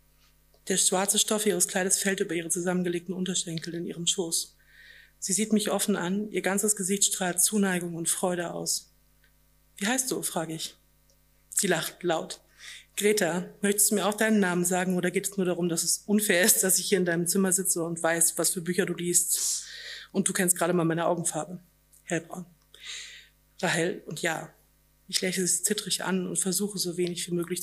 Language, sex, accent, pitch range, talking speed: German, female, German, 170-195 Hz, 190 wpm